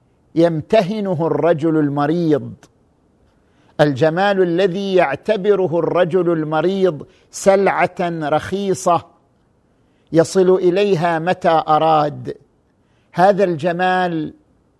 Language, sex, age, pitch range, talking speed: Arabic, male, 50-69, 155-190 Hz, 65 wpm